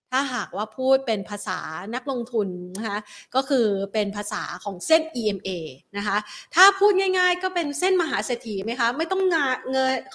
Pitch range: 200-255 Hz